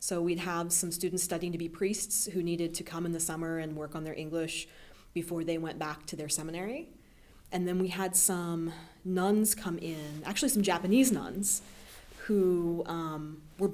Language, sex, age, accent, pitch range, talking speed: English, female, 30-49, American, 160-195 Hz, 190 wpm